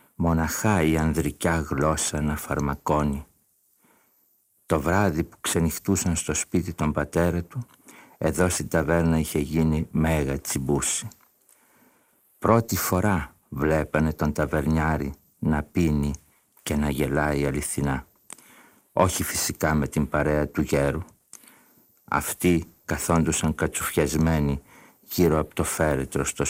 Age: 60-79